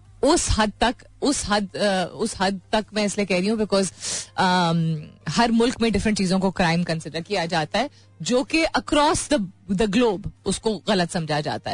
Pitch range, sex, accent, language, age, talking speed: 165-215 Hz, female, native, Hindi, 30-49, 175 wpm